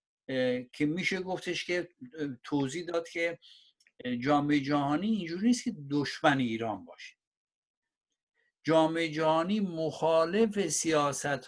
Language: Persian